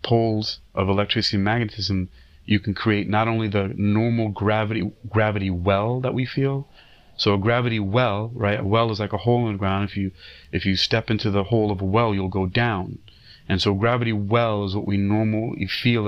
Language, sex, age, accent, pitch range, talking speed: English, male, 30-49, American, 100-115 Hz, 205 wpm